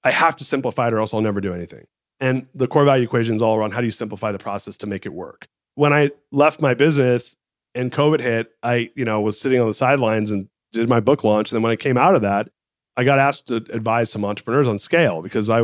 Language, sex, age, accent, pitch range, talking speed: English, male, 30-49, American, 110-140 Hz, 265 wpm